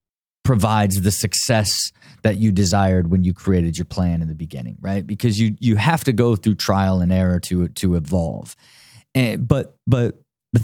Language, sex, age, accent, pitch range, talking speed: English, male, 30-49, American, 105-145 Hz, 180 wpm